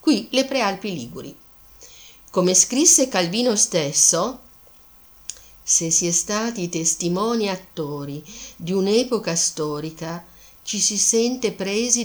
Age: 50-69